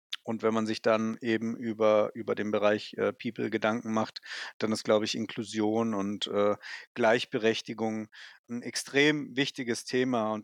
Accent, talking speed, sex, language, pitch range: German, 155 wpm, male, German, 120-145 Hz